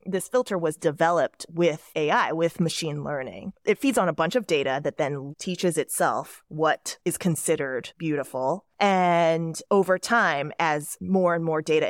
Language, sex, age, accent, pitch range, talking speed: English, female, 20-39, American, 155-195 Hz, 160 wpm